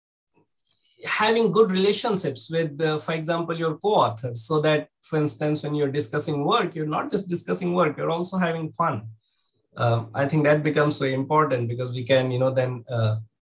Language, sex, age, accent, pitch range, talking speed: English, male, 20-39, Indian, 125-155 Hz, 180 wpm